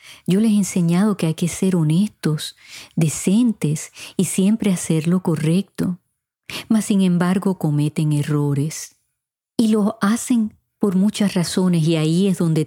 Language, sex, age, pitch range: Spanish, female, 40-59, 150-190 Hz